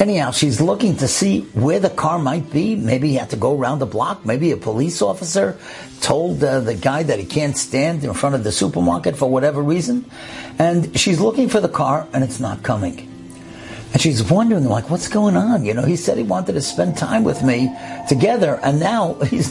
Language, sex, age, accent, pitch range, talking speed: English, male, 60-79, American, 110-165 Hz, 215 wpm